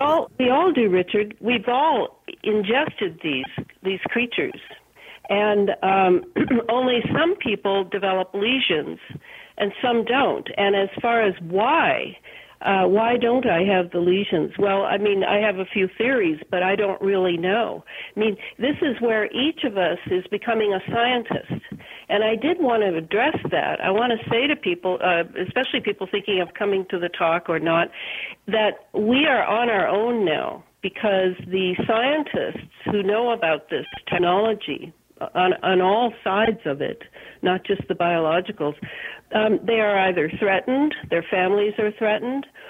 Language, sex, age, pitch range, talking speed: English, female, 60-79, 185-235 Hz, 165 wpm